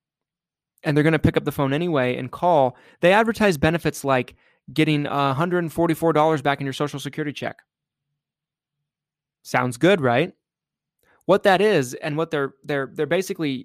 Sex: male